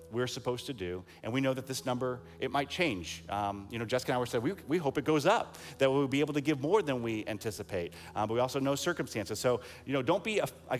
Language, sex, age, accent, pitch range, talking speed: English, male, 30-49, American, 100-130 Hz, 270 wpm